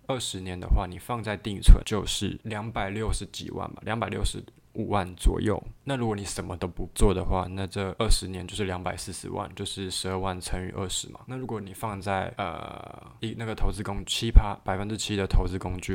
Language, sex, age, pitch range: Chinese, male, 20-39, 95-115 Hz